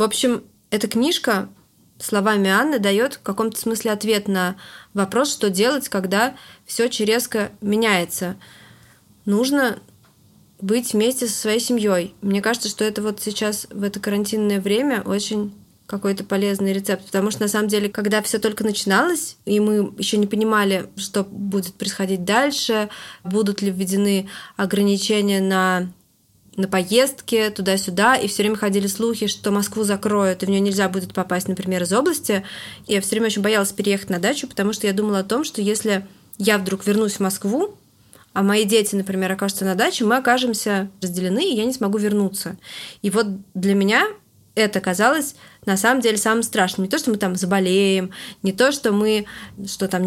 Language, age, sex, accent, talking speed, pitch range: Russian, 20-39, female, native, 170 wpm, 195-225 Hz